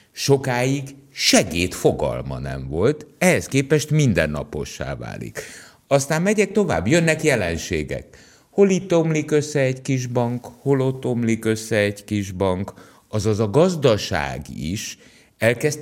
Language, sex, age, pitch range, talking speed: Hungarian, male, 60-79, 85-130 Hz, 120 wpm